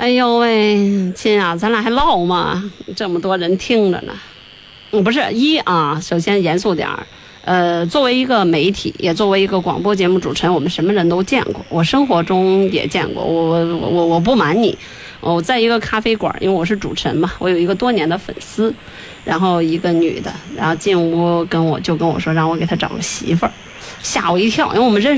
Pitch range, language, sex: 170-245 Hz, Chinese, female